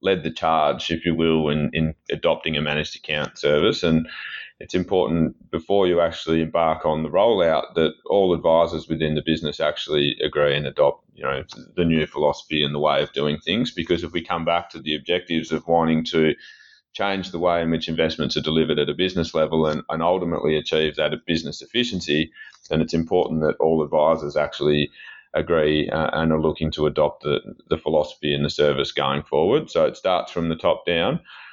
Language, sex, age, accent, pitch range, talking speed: English, male, 30-49, Australian, 75-85 Hz, 200 wpm